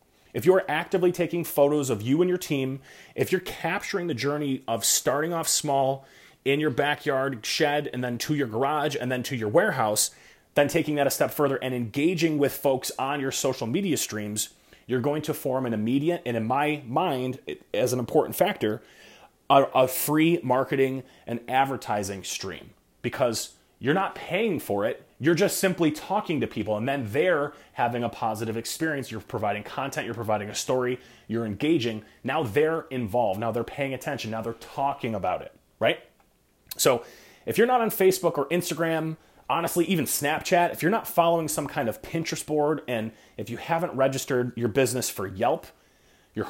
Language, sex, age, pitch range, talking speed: English, male, 30-49, 125-160 Hz, 180 wpm